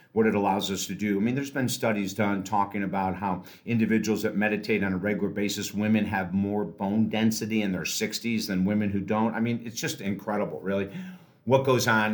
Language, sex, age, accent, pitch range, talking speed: English, male, 50-69, American, 105-140 Hz, 215 wpm